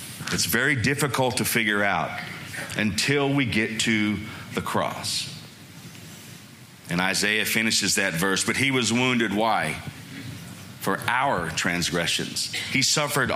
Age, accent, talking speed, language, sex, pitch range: 40-59, American, 120 wpm, English, male, 110-140 Hz